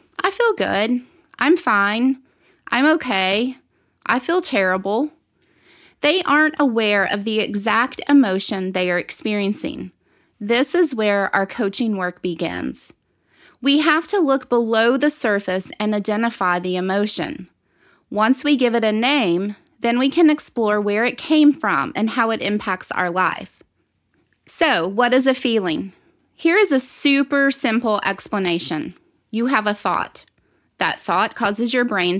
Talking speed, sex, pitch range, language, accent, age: 145 wpm, female, 190-265 Hz, English, American, 20-39